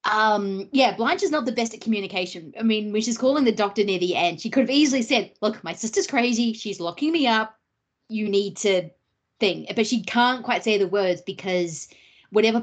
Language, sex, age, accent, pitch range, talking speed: English, female, 20-39, Australian, 185-230 Hz, 215 wpm